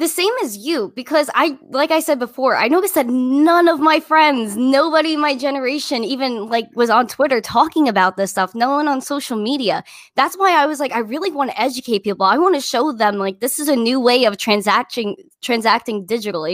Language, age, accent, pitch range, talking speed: English, 10-29, American, 225-300 Hz, 220 wpm